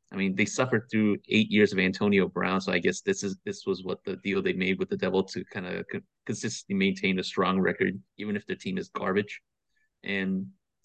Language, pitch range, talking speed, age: English, 95-125 Hz, 225 wpm, 30-49